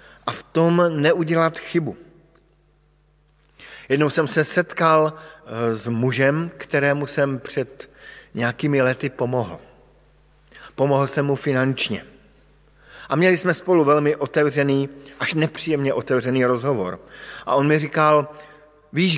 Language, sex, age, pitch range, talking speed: Slovak, male, 50-69, 130-160 Hz, 115 wpm